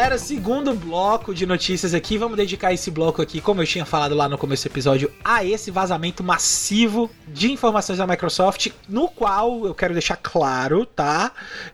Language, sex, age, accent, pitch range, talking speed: Portuguese, male, 20-39, Brazilian, 185-235 Hz, 175 wpm